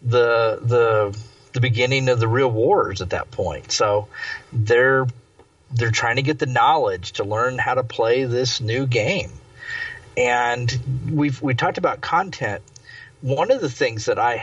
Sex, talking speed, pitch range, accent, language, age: male, 160 wpm, 120-170 Hz, American, English, 40-59